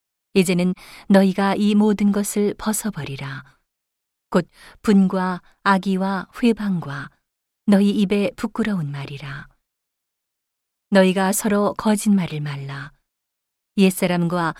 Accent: native